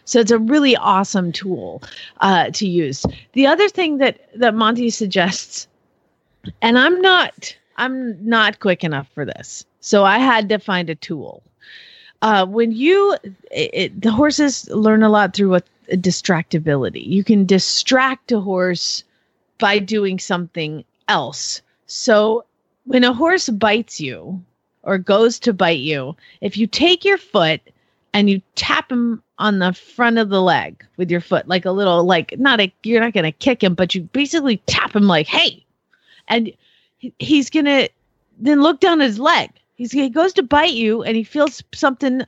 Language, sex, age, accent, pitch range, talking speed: English, female, 40-59, American, 190-265 Hz, 170 wpm